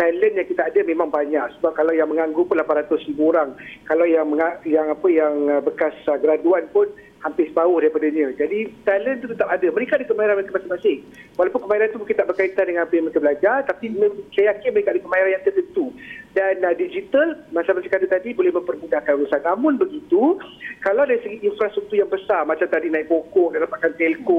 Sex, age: male, 40-59